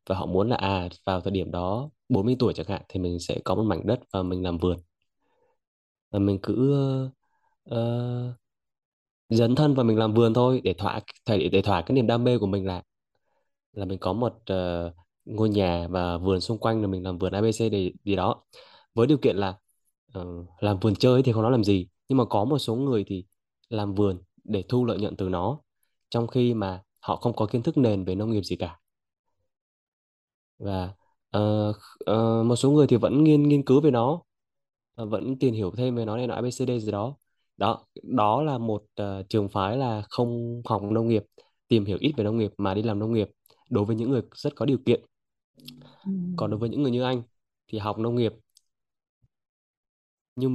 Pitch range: 95-125 Hz